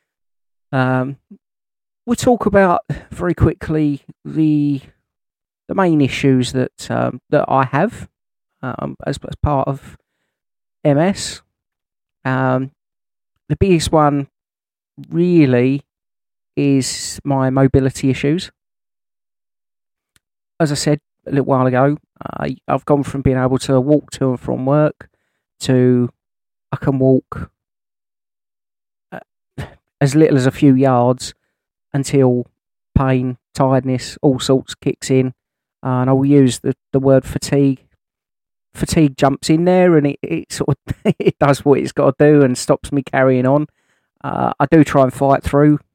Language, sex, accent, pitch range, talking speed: English, male, British, 130-155 Hz, 135 wpm